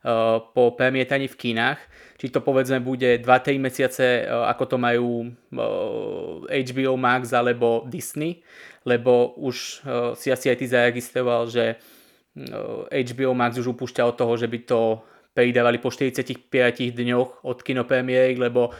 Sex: male